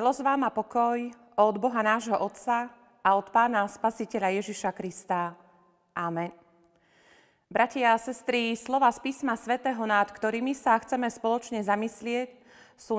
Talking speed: 135 wpm